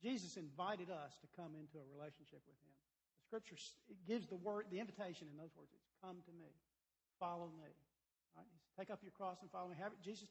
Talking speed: 220 wpm